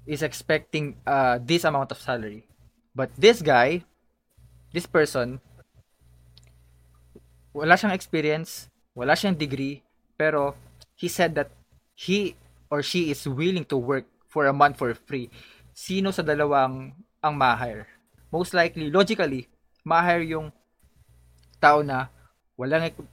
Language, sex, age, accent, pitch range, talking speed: Filipino, male, 20-39, native, 125-175 Hz, 115 wpm